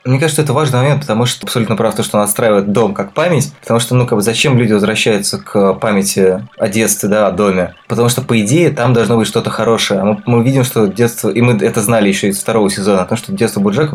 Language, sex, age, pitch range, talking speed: Russian, male, 20-39, 105-120 Hz, 245 wpm